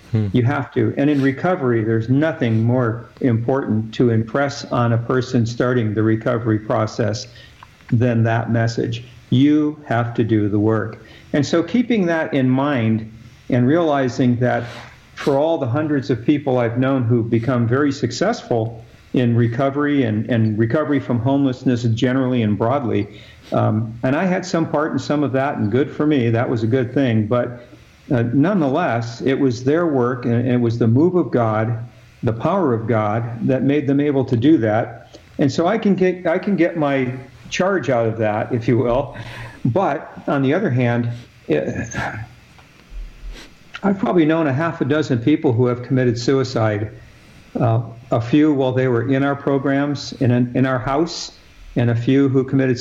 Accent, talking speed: American, 180 wpm